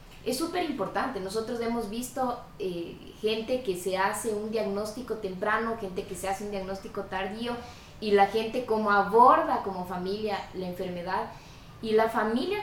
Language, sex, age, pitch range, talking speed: Spanish, female, 20-39, 190-230 Hz, 155 wpm